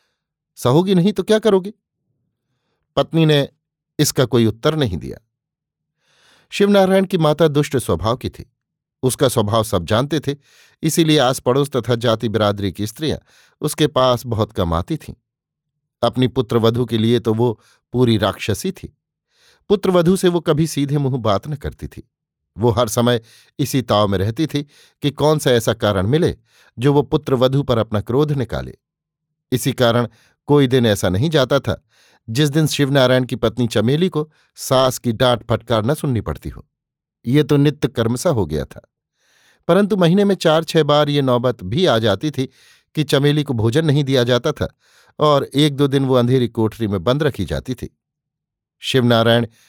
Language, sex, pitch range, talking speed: Hindi, male, 115-150 Hz, 170 wpm